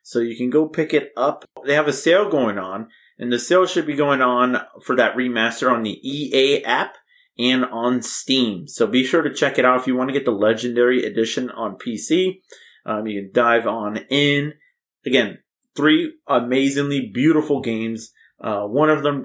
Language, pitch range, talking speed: English, 125-205 Hz, 195 wpm